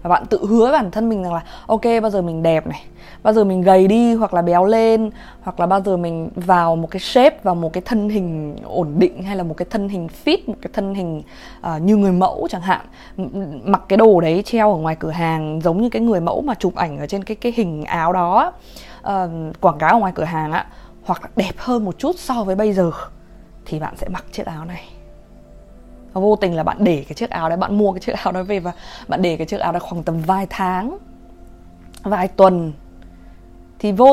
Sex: female